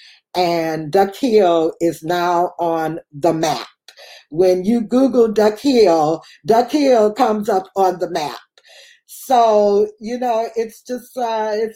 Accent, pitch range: American, 180-220 Hz